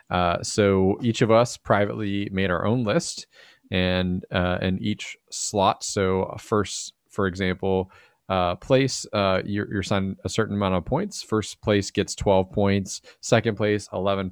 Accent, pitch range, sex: American, 90-105 Hz, male